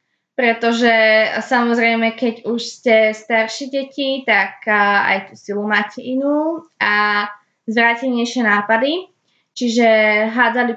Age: 20-39